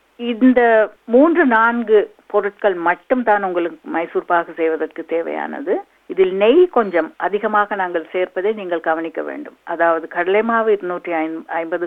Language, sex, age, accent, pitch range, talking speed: Tamil, female, 50-69, native, 175-265 Hz, 110 wpm